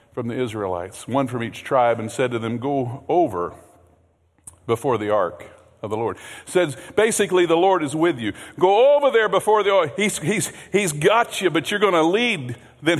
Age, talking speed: 50-69, 200 wpm